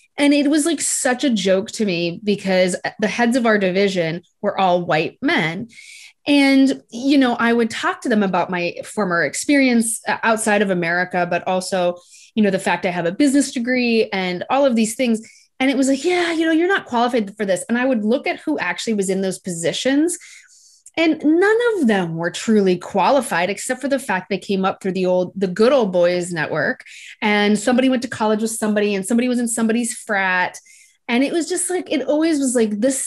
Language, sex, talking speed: English, female, 215 wpm